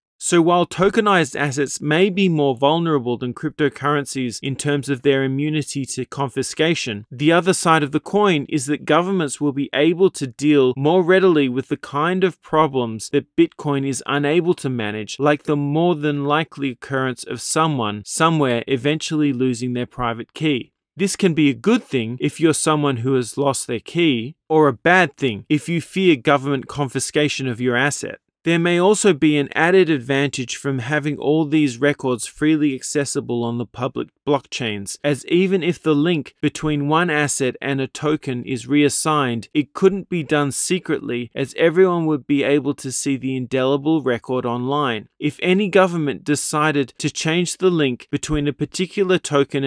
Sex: male